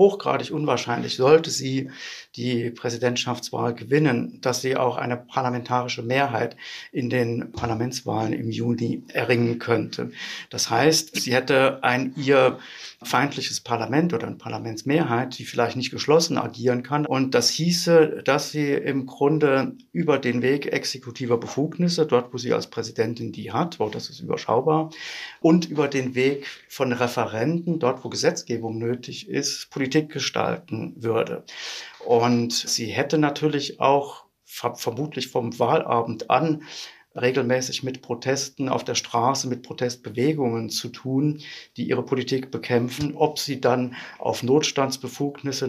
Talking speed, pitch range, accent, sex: 135 wpm, 120-145 Hz, German, male